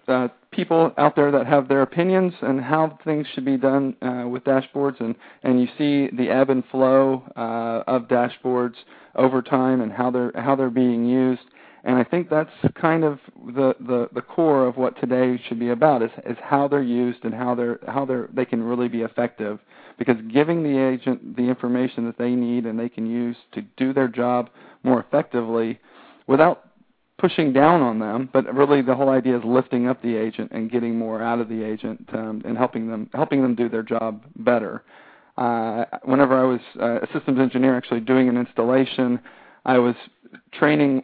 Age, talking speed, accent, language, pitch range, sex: 40-59, 200 wpm, American, English, 120-135 Hz, male